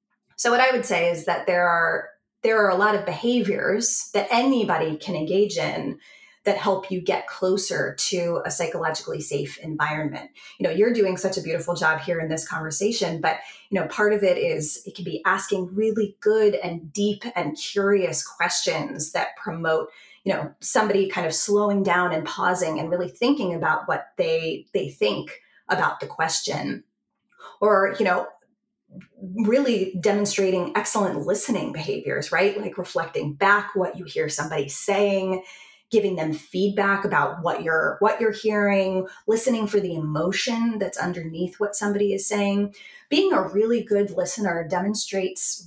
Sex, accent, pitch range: female, American, 175-210 Hz